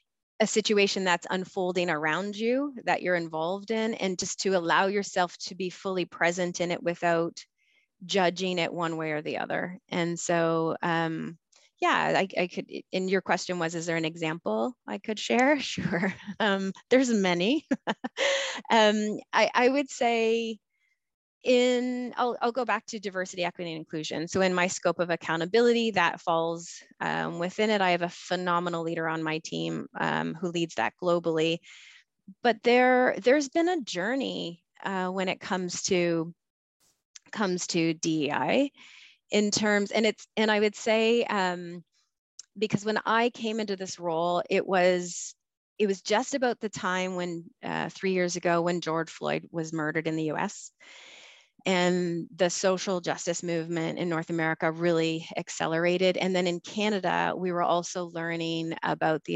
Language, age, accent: English, 30-49, American